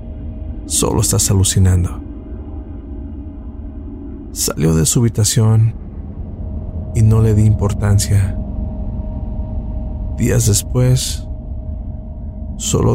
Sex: male